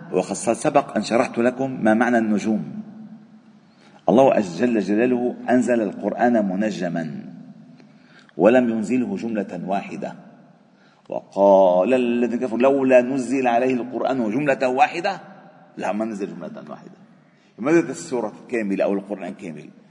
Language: Arabic